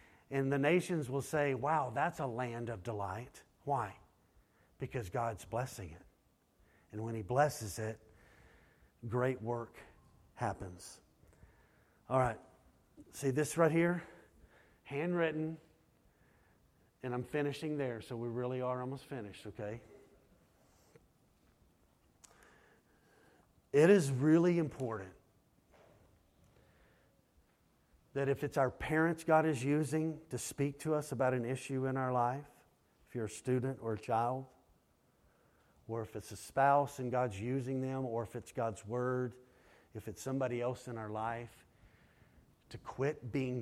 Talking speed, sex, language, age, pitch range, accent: 130 wpm, male, English, 50-69, 110-140 Hz, American